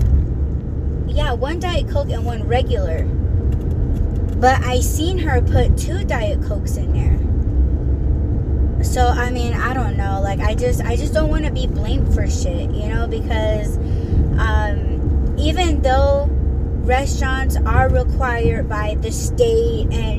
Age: 20-39